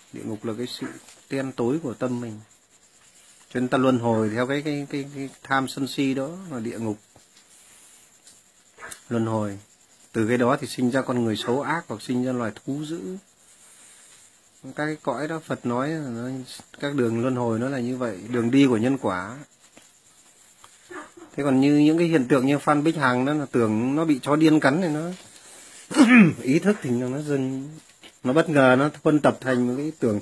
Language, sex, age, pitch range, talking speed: Vietnamese, male, 30-49, 125-170 Hz, 205 wpm